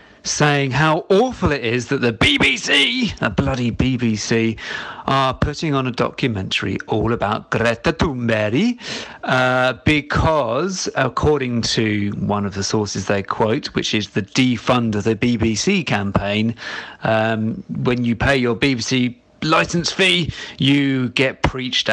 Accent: British